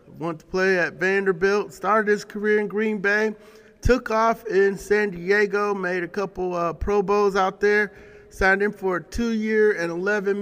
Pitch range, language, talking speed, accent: 165-200 Hz, English, 180 wpm, American